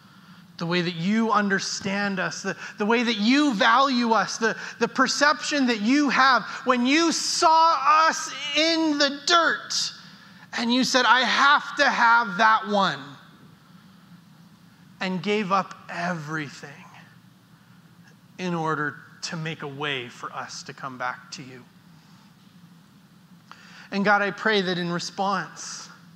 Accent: American